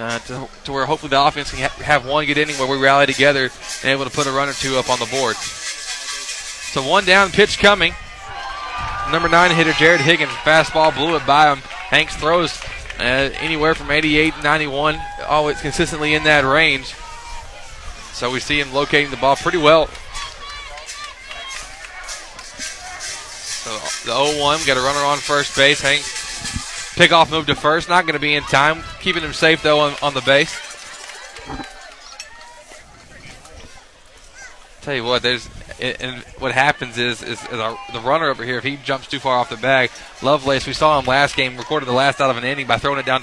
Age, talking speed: 20-39, 185 wpm